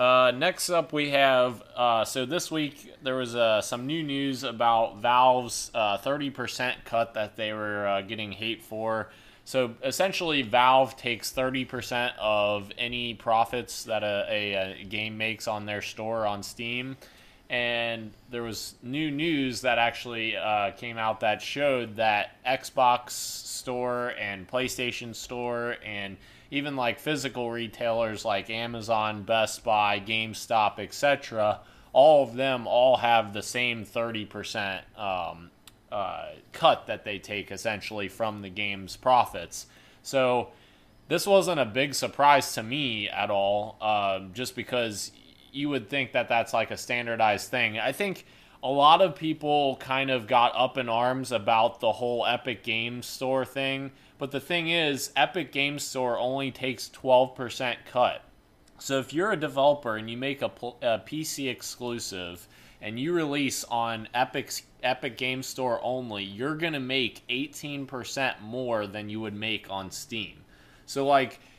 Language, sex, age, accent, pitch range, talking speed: English, male, 20-39, American, 110-135 Hz, 150 wpm